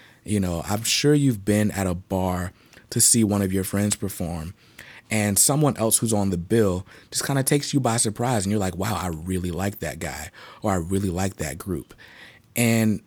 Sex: male